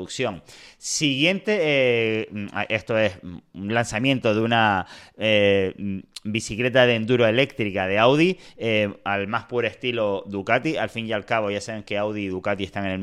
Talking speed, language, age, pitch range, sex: 160 wpm, Spanish, 30-49, 105-125 Hz, male